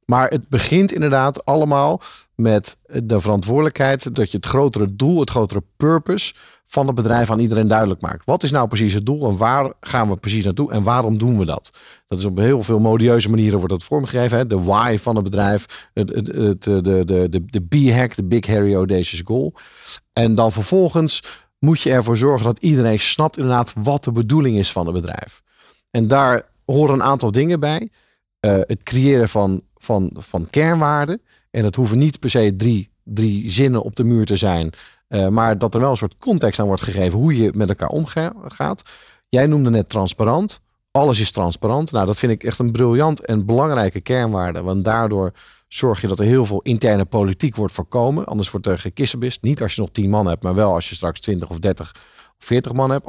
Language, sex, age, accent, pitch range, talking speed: Dutch, male, 50-69, Dutch, 100-130 Hz, 200 wpm